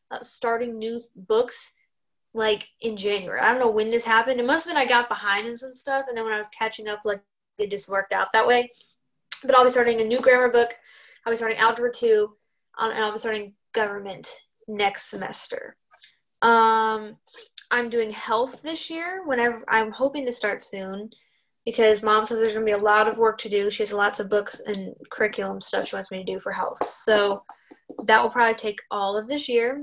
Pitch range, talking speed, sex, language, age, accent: 210-245 Hz, 215 wpm, female, English, 10-29, American